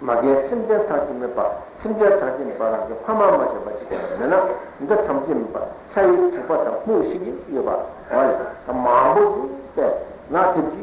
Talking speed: 120 wpm